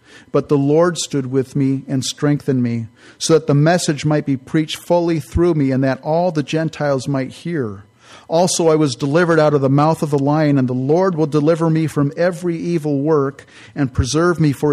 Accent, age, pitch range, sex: American, 50-69, 125-160 Hz, male